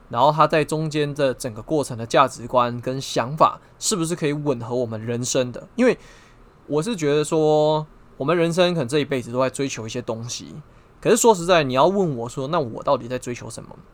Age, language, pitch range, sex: 20-39, Chinese, 125-160 Hz, male